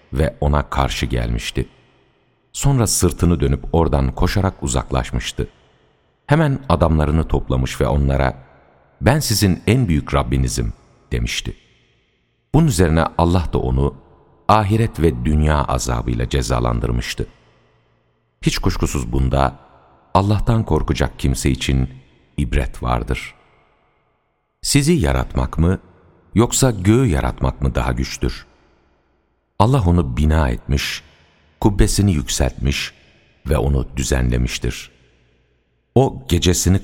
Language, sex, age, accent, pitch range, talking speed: Turkish, male, 60-79, native, 65-90 Hz, 100 wpm